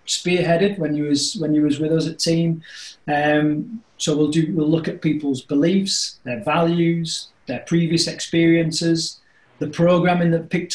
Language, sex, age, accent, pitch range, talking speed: English, male, 30-49, British, 150-185 Hz, 160 wpm